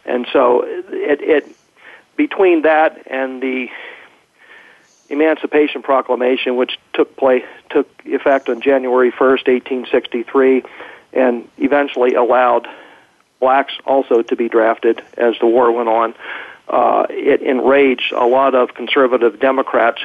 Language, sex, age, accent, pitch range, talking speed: English, male, 50-69, American, 125-135 Hz, 125 wpm